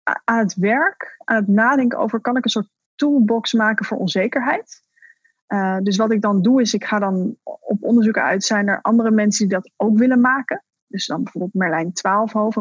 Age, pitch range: 20-39, 200-245 Hz